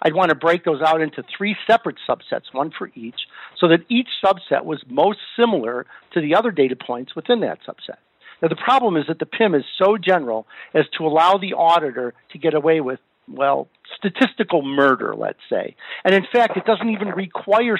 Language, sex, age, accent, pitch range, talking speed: English, male, 50-69, American, 150-195 Hz, 200 wpm